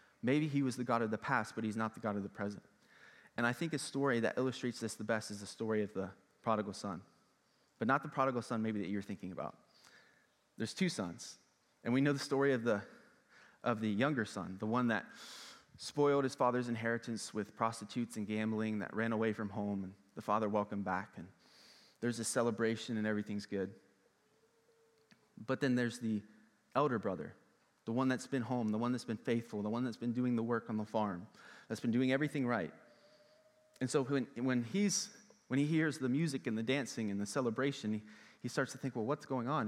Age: 20-39